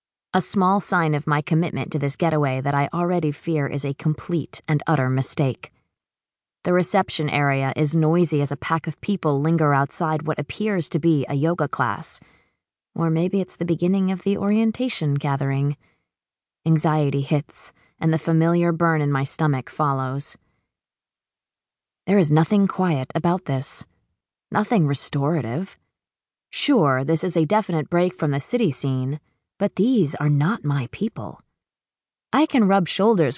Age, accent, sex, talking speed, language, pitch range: 20-39, American, female, 155 wpm, English, 145-185 Hz